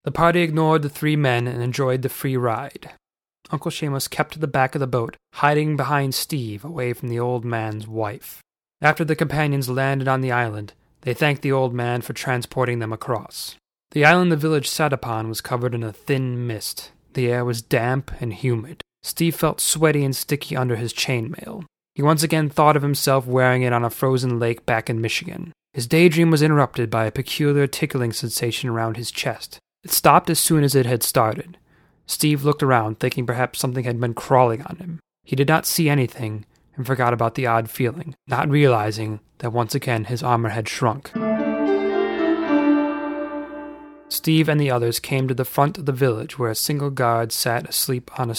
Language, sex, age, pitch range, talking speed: English, male, 20-39, 120-155 Hz, 195 wpm